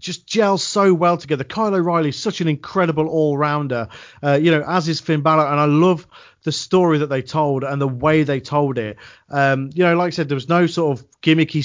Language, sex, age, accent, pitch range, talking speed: English, male, 40-59, British, 140-170 Hz, 230 wpm